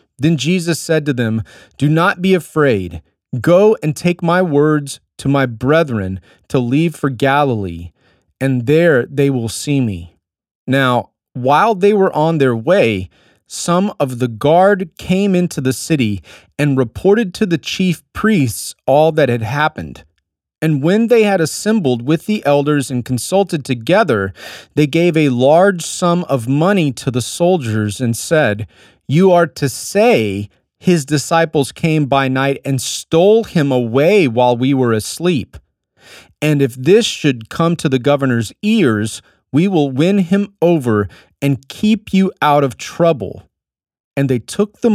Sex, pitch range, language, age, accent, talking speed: male, 120-170 Hz, English, 30-49, American, 155 wpm